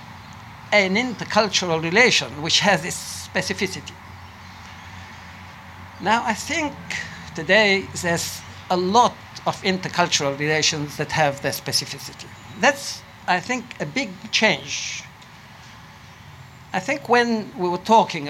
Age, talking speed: 60-79, 110 wpm